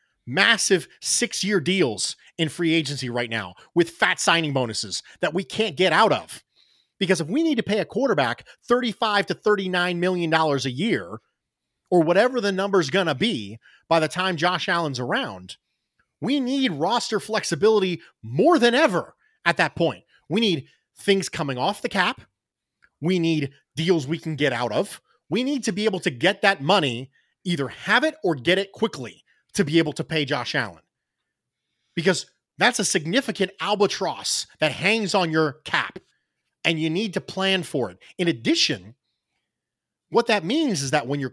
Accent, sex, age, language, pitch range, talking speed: American, male, 30-49, English, 160-210 Hz, 175 wpm